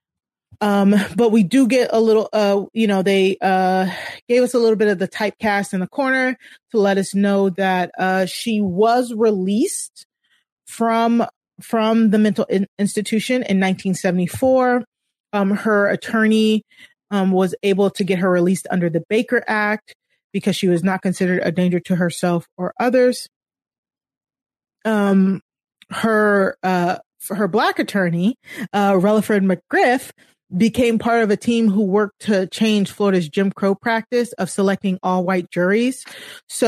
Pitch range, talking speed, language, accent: 185-220 Hz, 150 wpm, English, American